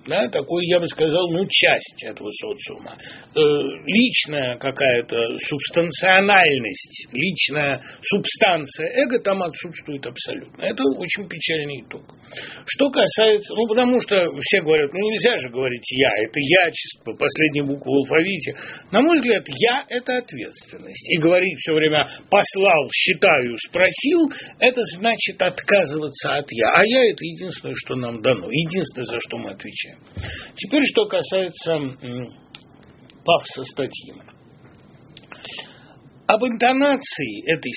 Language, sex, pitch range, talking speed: Russian, male, 130-210 Hz, 125 wpm